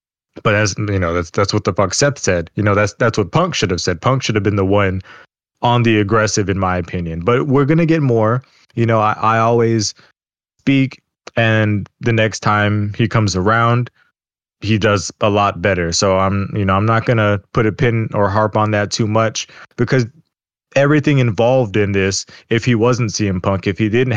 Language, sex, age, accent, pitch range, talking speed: English, male, 20-39, American, 100-120 Hz, 210 wpm